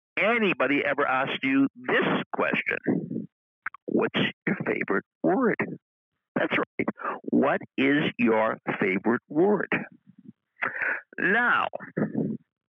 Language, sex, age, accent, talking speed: English, male, 60-79, American, 85 wpm